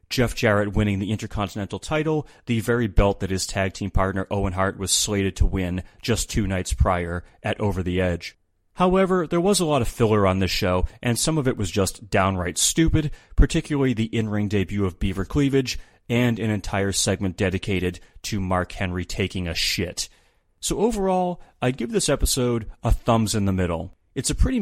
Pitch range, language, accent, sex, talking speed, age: 95-115 Hz, English, American, male, 190 wpm, 30-49